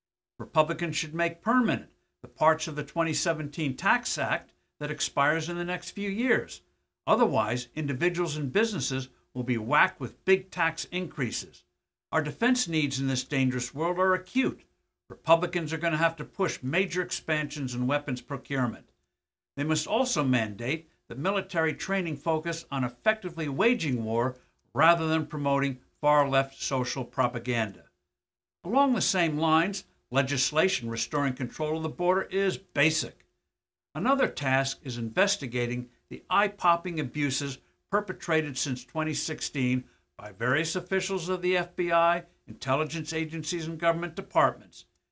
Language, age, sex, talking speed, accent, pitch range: English, 60-79, male, 135 wpm, American, 125-175 Hz